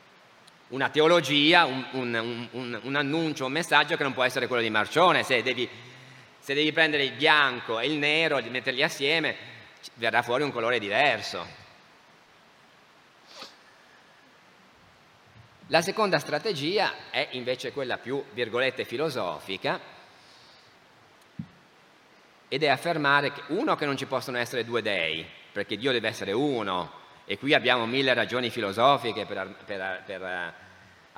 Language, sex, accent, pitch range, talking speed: Italian, male, native, 125-165 Hz, 130 wpm